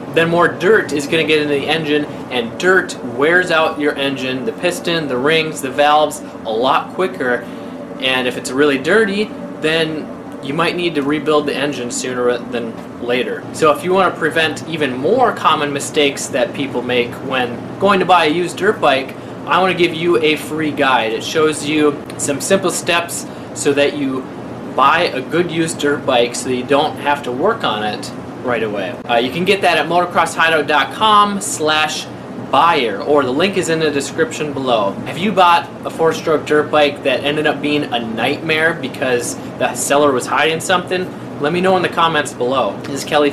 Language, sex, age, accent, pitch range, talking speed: English, male, 20-39, American, 145-170 Hz, 190 wpm